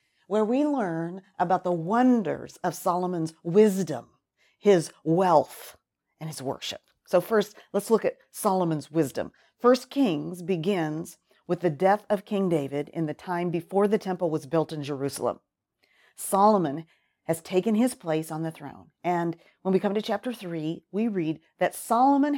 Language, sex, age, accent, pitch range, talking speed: English, female, 40-59, American, 160-205 Hz, 160 wpm